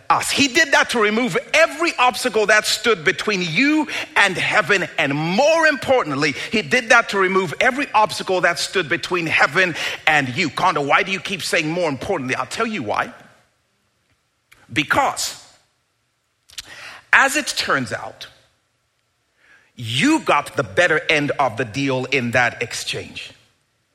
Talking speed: 145 wpm